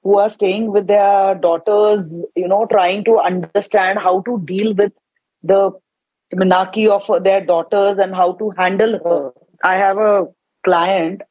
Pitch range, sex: 185-230 Hz, female